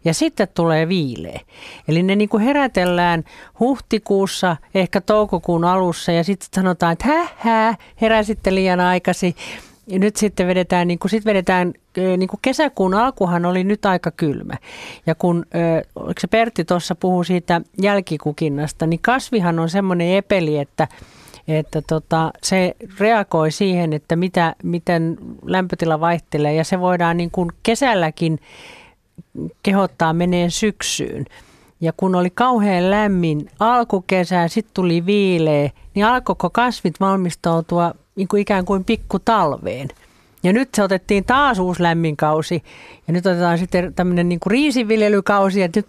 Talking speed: 135 wpm